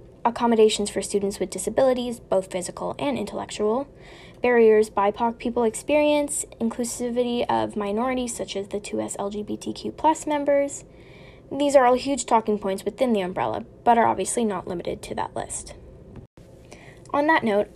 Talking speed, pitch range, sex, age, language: 140 wpm, 200-265 Hz, female, 10-29, English